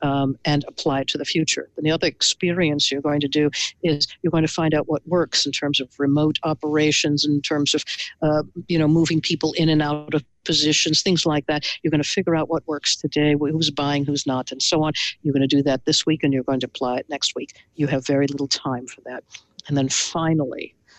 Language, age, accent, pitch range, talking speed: English, 60-79, American, 145-165 Hz, 240 wpm